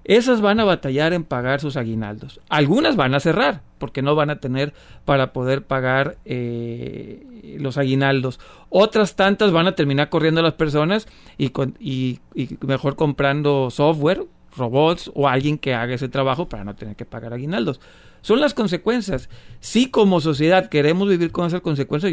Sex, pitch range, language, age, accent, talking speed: male, 135-170 Hz, Spanish, 40-59, Mexican, 165 wpm